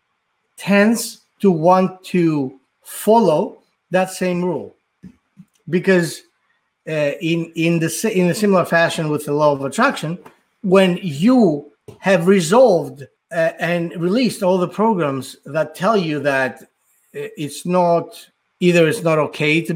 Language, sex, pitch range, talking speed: English, male, 135-180 Hz, 130 wpm